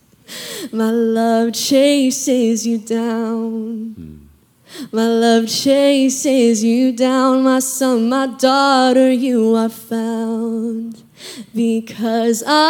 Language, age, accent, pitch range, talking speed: English, 10-29, American, 235-305 Hz, 85 wpm